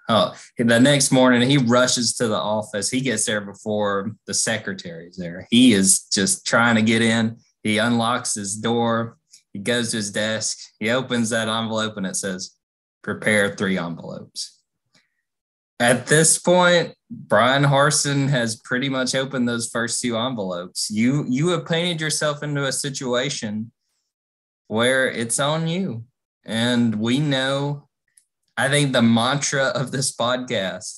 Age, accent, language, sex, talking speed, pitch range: 20-39, American, English, male, 150 wpm, 110-135 Hz